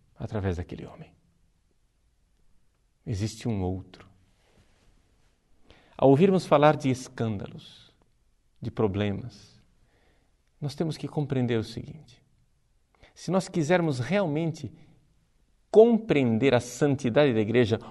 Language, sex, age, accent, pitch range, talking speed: Portuguese, male, 50-69, Brazilian, 115-155 Hz, 95 wpm